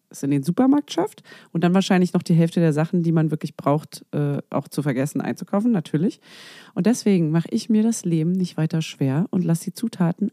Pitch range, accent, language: 160-220 Hz, German, German